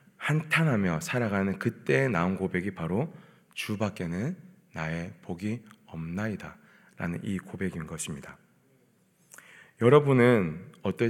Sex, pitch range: male, 95-125 Hz